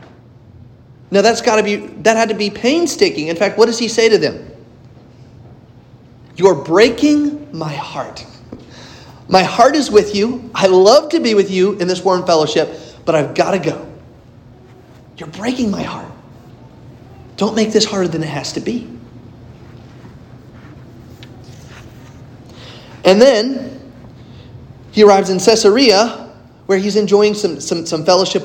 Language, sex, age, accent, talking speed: English, male, 30-49, American, 145 wpm